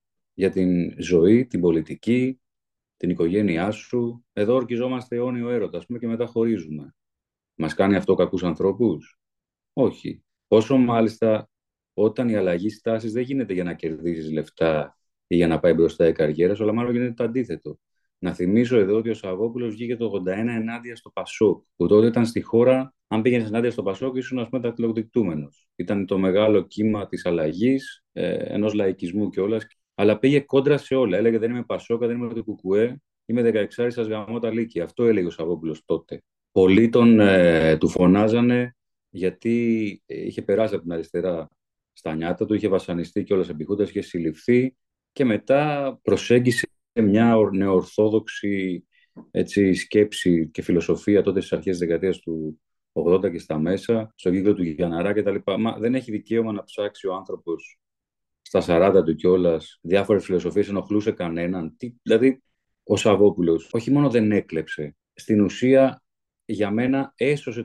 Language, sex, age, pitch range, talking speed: Greek, male, 30-49, 90-120 Hz, 155 wpm